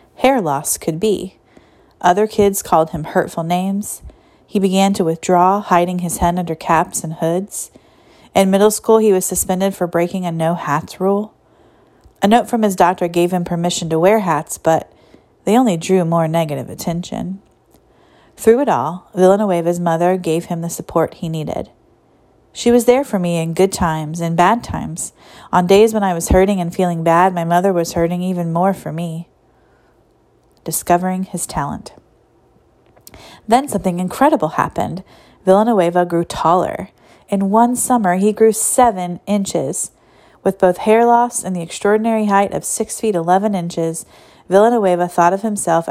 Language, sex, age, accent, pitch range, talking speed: English, female, 40-59, American, 170-205 Hz, 160 wpm